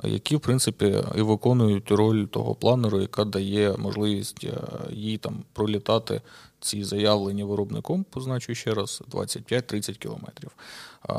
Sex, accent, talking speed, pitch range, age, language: male, native, 120 wpm, 105-145 Hz, 30-49, Ukrainian